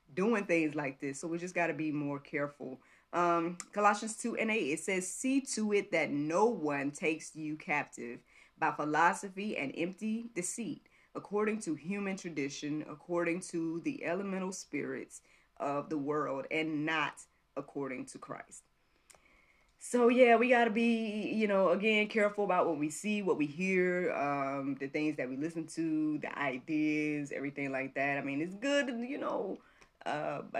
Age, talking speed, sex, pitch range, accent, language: 20-39, 170 wpm, female, 145-185 Hz, American, English